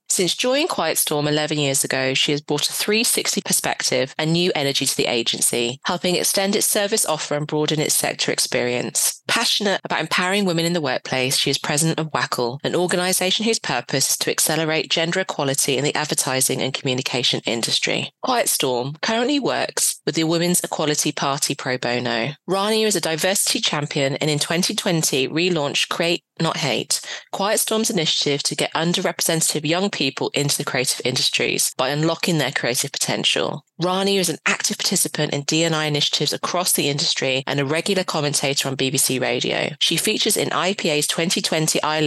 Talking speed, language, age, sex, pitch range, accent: 170 wpm, English, 30-49, female, 140-180 Hz, British